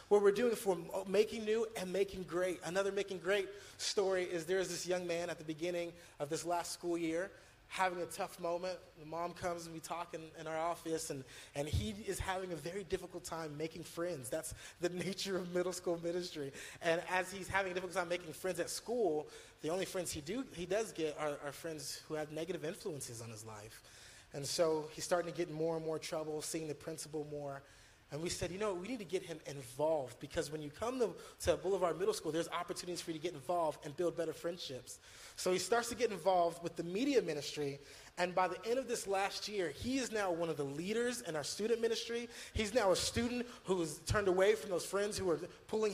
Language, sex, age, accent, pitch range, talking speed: English, male, 30-49, American, 160-210 Hz, 230 wpm